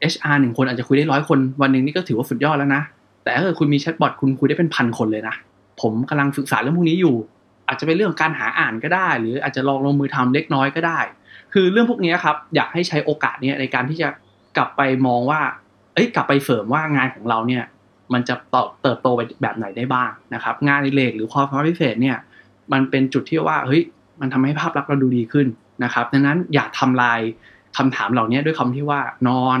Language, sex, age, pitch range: Thai, male, 20-39, 125-150 Hz